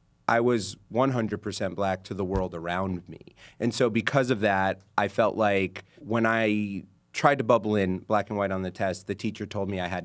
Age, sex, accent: 30-49, male, American